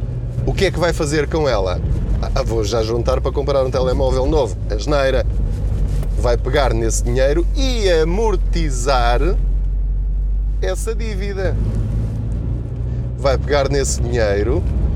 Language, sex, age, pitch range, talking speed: Portuguese, male, 20-39, 75-115 Hz, 125 wpm